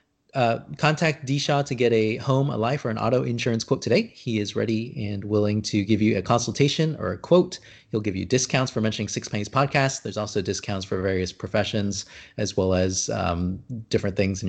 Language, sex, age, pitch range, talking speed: English, male, 30-49, 100-125 Hz, 205 wpm